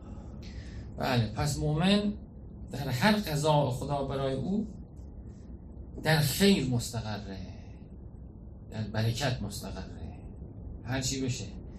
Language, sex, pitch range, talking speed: Persian, male, 100-155 Hz, 85 wpm